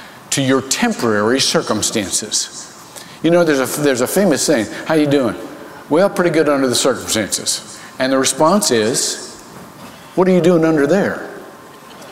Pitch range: 115-155 Hz